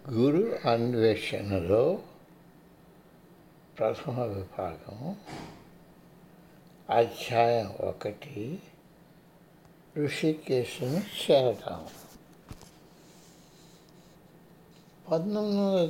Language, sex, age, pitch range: Hindi, male, 60-79, 125-170 Hz